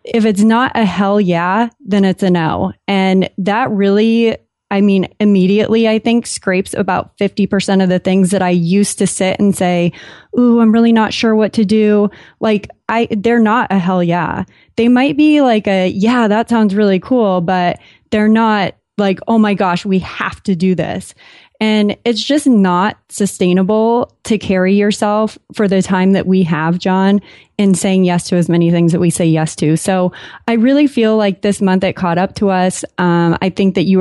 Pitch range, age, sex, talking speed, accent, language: 185-220 Hz, 20-39, female, 200 wpm, American, English